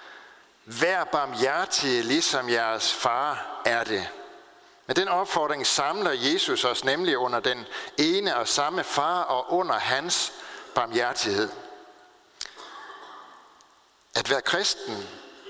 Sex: male